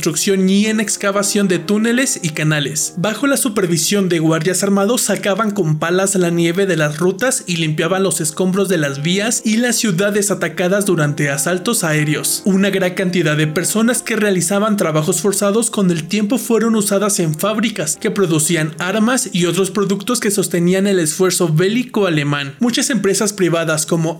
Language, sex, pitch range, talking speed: Spanish, male, 170-210 Hz, 170 wpm